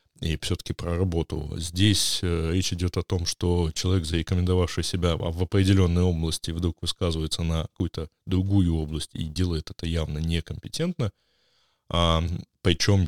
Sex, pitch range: male, 80-100 Hz